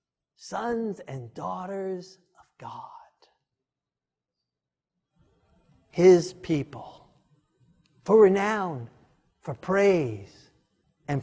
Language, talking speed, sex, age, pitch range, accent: English, 65 wpm, male, 50-69, 155-220 Hz, American